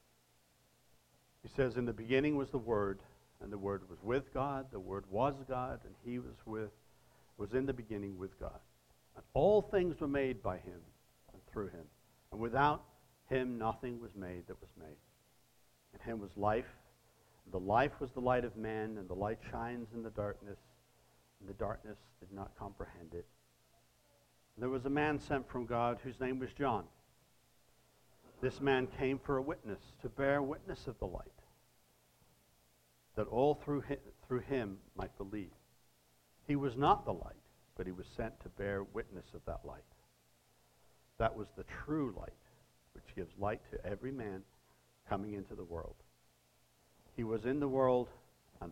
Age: 60-79